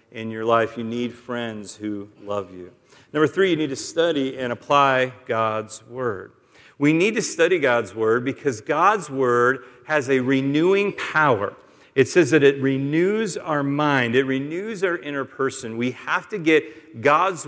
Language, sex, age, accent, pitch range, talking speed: English, male, 50-69, American, 130-160 Hz, 170 wpm